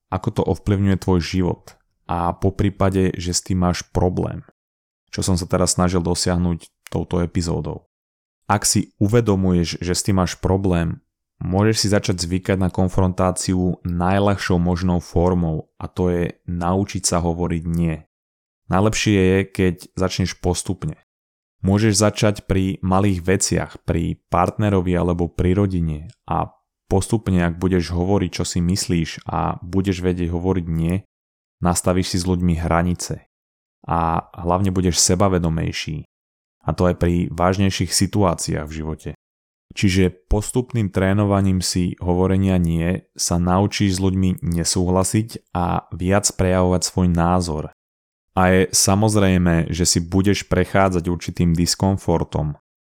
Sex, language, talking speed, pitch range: male, Slovak, 130 wpm, 85-95 Hz